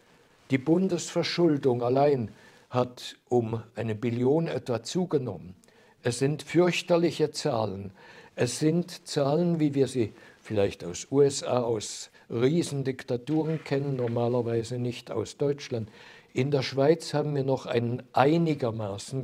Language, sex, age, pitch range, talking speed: German, male, 60-79, 125-155 Hz, 115 wpm